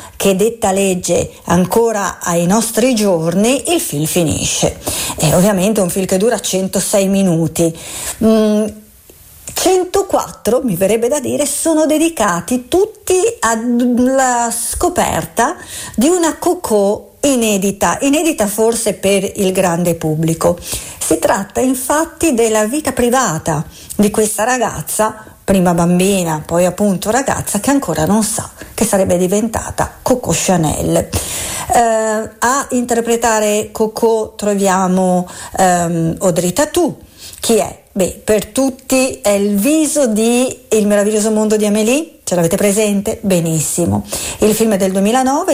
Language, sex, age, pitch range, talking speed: Italian, female, 50-69, 185-245 Hz, 125 wpm